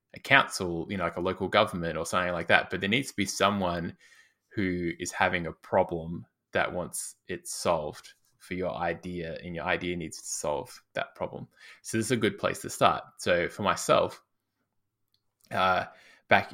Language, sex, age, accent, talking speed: English, male, 20-39, Australian, 180 wpm